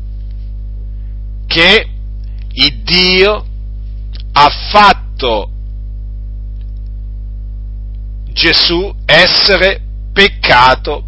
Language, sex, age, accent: Italian, male, 50-69, native